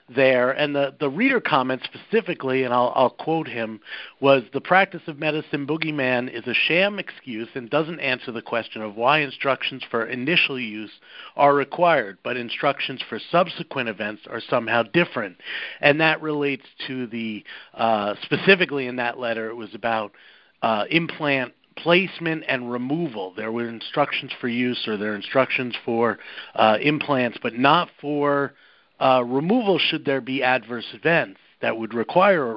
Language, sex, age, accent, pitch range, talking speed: English, male, 50-69, American, 120-155 Hz, 160 wpm